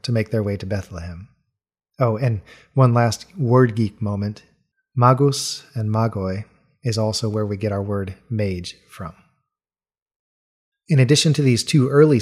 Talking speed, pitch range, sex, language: 150 wpm, 110-130 Hz, male, English